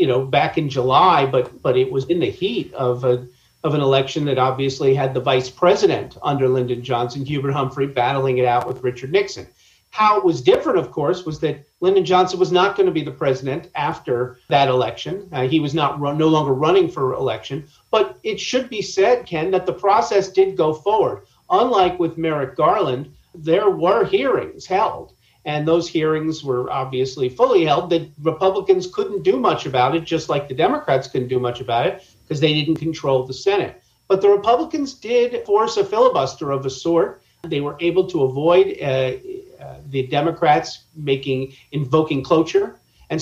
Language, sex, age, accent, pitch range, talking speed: English, male, 50-69, American, 135-185 Hz, 190 wpm